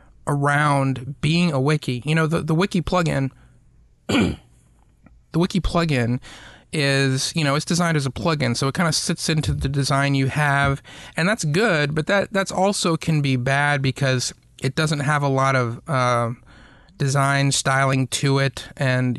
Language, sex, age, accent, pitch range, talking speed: English, male, 30-49, American, 130-155 Hz, 170 wpm